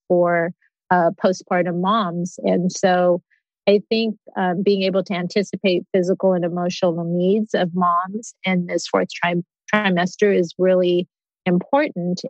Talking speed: 125 wpm